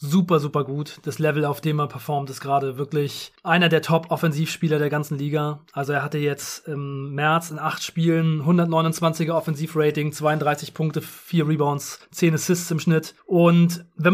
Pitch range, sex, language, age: 155-175 Hz, male, German, 30-49